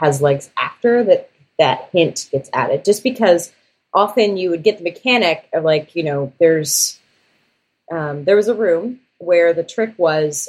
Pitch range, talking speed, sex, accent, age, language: 155-215 Hz, 170 wpm, female, American, 30-49, English